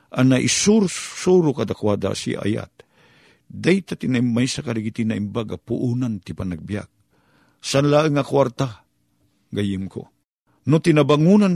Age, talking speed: 50-69, 115 wpm